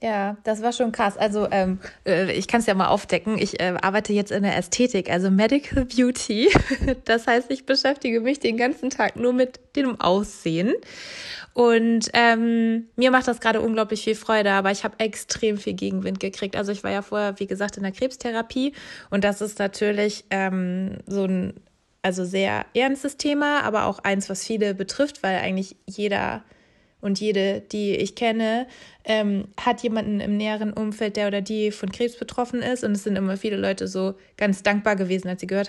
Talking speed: 185 wpm